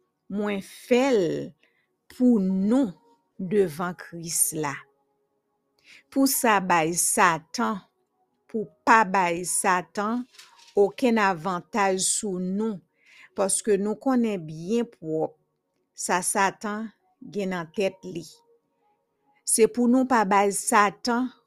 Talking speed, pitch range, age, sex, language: 105 wpm, 170-220 Hz, 50-69, female, English